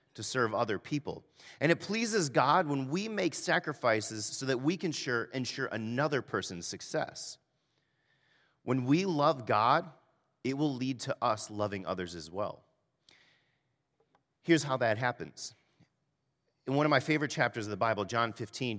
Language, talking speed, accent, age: English, 155 wpm, American, 30-49